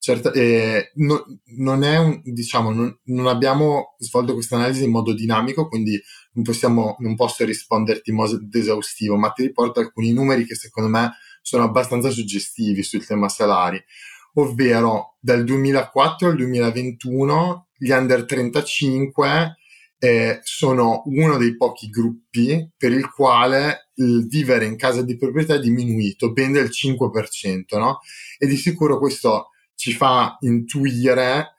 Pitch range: 110-135 Hz